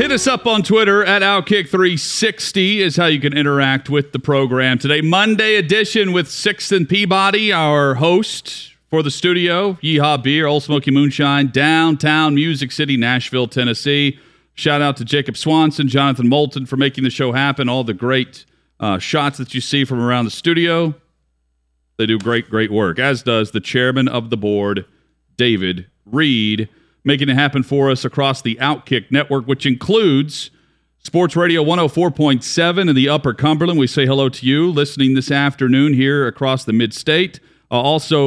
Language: English